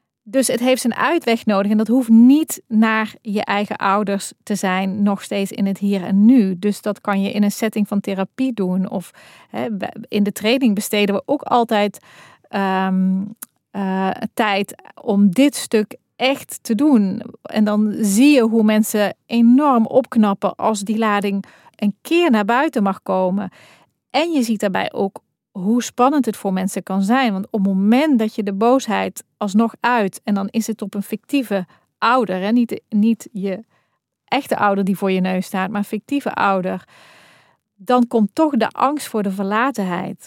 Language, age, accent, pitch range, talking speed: Dutch, 40-59, Dutch, 195-235 Hz, 175 wpm